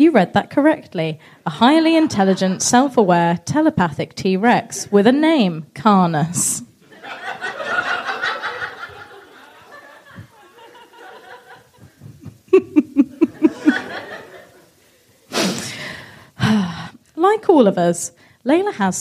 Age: 20-39